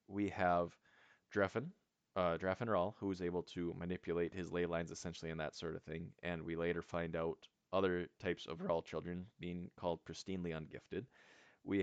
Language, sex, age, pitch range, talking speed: English, male, 20-39, 85-100 Hz, 180 wpm